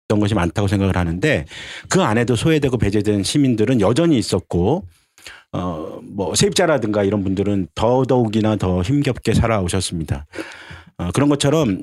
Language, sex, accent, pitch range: Korean, male, native, 95-135 Hz